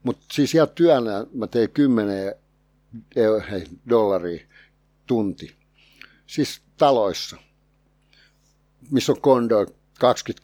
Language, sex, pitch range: Finnish, male, 100-125 Hz